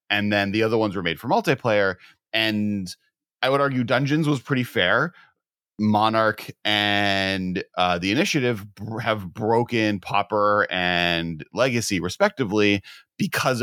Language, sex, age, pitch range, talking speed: English, male, 30-49, 100-125 Hz, 130 wpm